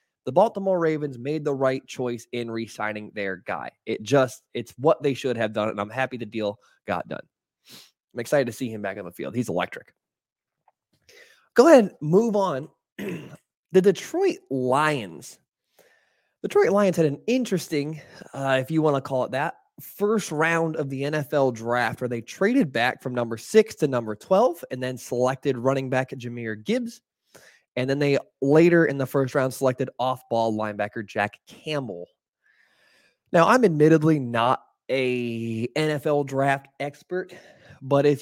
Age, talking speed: 20-39, 165 wpm